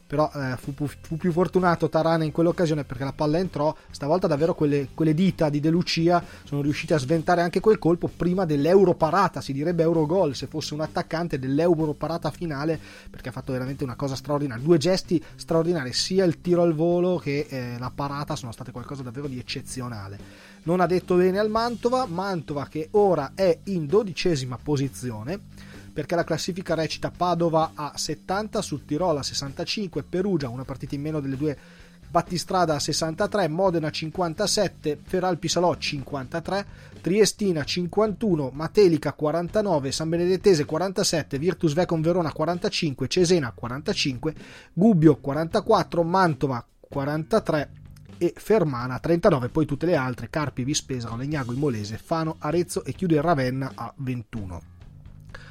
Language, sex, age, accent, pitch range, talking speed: Italian, male, 30-49, native, 140-175 Hz, 160 wpm